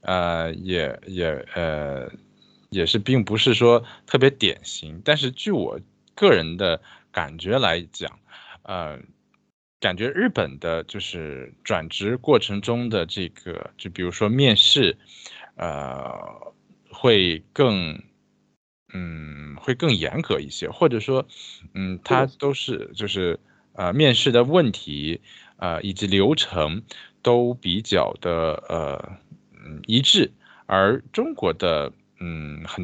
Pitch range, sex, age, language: 85-125 Hz, male, 20-39, Japanese